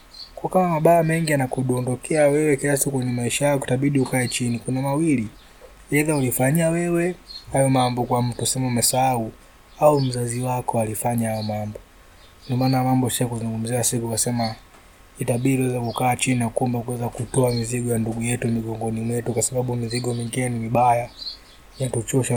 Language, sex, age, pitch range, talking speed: Swahili, male, 20-39, 115-130 Hz, 150 wpm